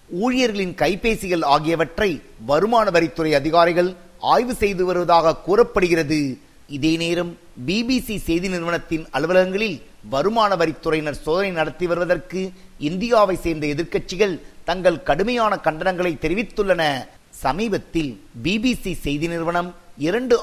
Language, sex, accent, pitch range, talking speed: Tamil, male, native, 160-190 Hz, 70 wpm